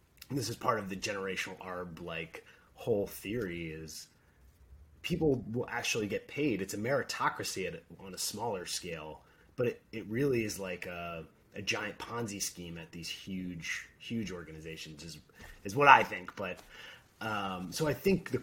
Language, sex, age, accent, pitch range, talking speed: English, male, 30-49, American, 85-120 Hz, 170 wpm